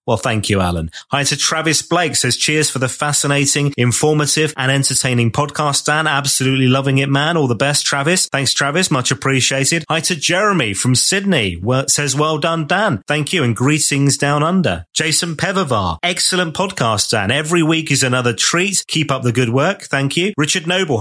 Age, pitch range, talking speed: 30-49, 125-160 Hz, 185 wpm